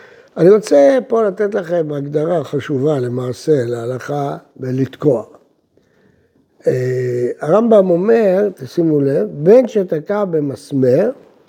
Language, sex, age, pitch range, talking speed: Hebrew, male, 60-79, 135-215 Hz, 90 wpm